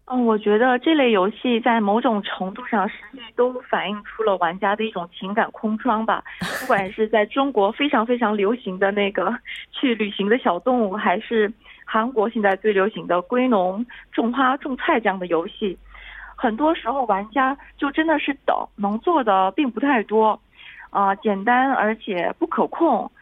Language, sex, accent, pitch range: Korean, female, Chinese, 200-265 Hz